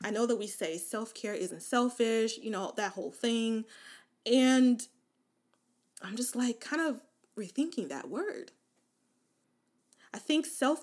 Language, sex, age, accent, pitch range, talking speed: English, female, 20-39, American, 205-270 Hz, 140 wpm